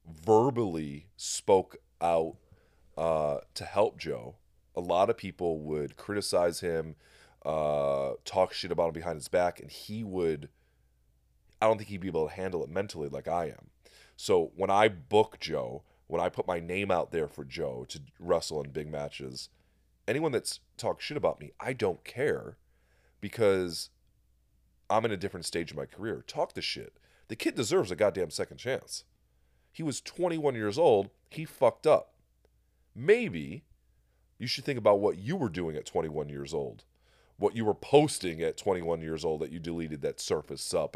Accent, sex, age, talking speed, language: American, male, 30-49, 175 wpm, English